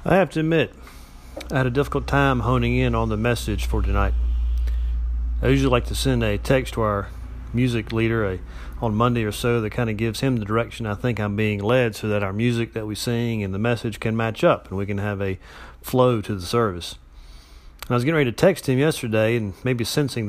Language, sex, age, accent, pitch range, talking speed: English, male, 40-59, American, 105-130 Hz, 230 wpm